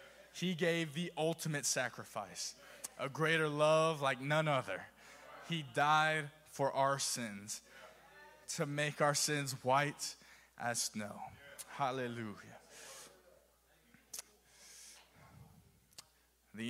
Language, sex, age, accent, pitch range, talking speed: English, male, 20-39, American, 110-135 Hz, 90 wpm